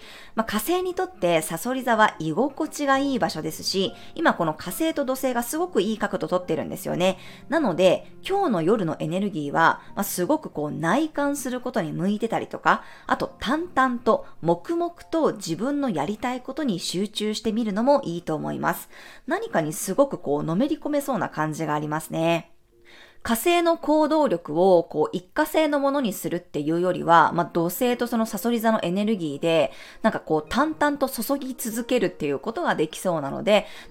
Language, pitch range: Japanese, 170-275 Hz